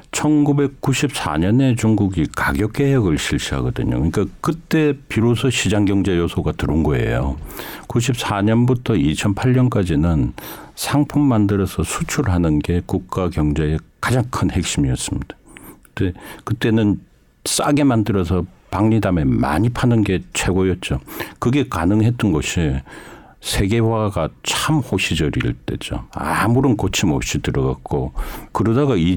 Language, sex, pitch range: Korean, male, 80-115 Hz